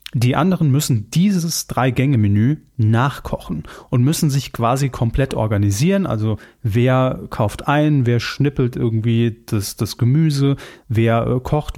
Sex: male